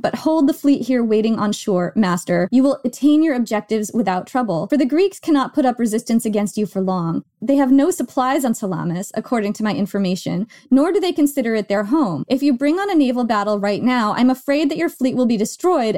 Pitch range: 215-290 Hz